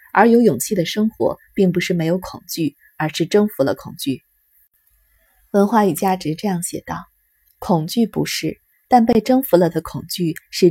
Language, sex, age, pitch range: Chinese, female, 30-49, 170-210 Hz